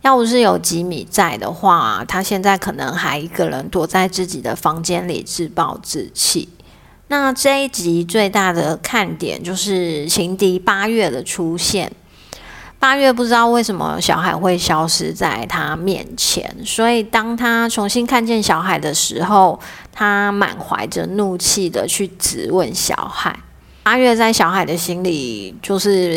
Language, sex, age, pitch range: Chinese, female, 30-49, 175-210 Hz